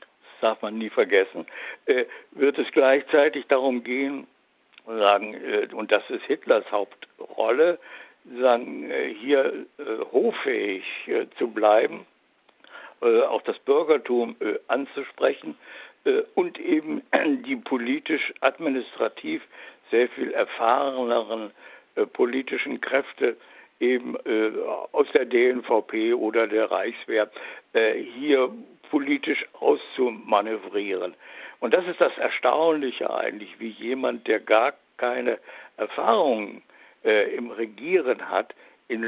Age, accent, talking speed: 60-79, German, 110 wpm